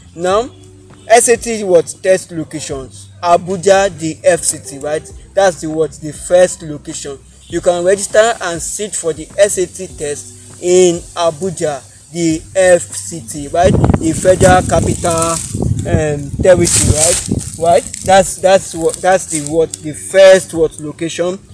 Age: 20-39